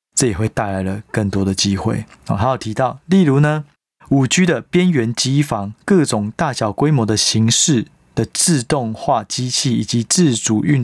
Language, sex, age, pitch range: Chinese, male, 20-39, 110-130 Hz